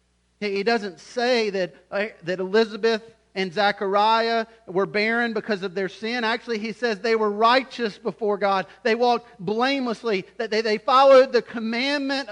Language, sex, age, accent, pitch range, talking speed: English, male, 40-59, American, 160-245 Hz, 145 wpm